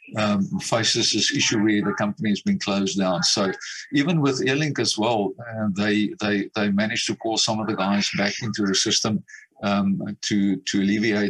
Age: 50-69